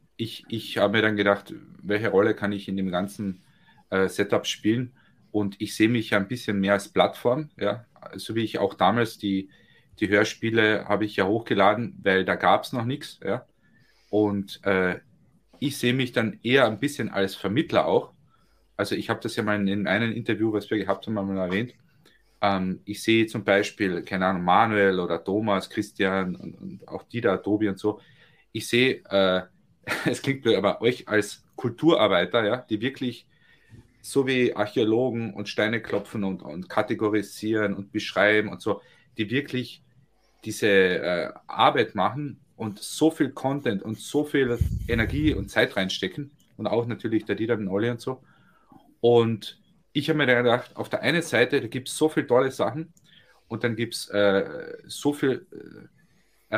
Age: 30-49